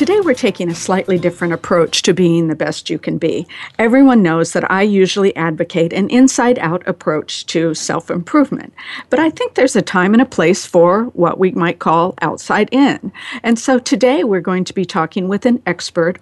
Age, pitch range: 50-69, 170-220 Hz